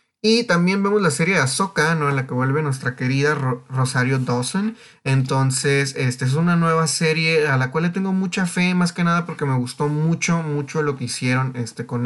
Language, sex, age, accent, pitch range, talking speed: Spanish, male, 30-49, Mexican, 135-165 Hz, 215 wpm